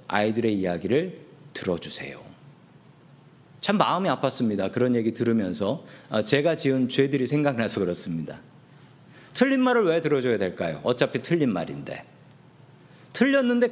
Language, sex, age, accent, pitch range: Korean, male, 40-59, native, 130-200 Hz